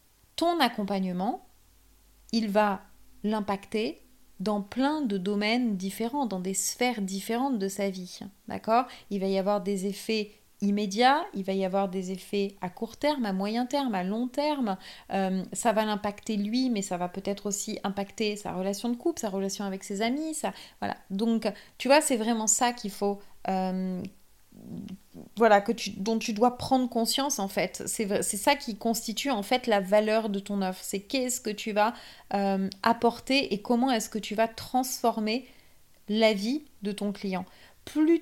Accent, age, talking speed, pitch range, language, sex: French, 30-49, 175 wpm, 200-250 Hz, French, female